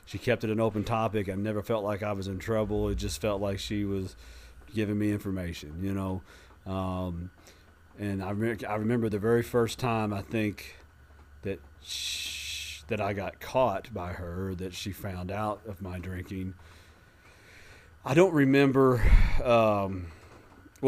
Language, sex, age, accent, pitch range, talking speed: English, male, 40-59, American, 95-110 Hz, 160 wpm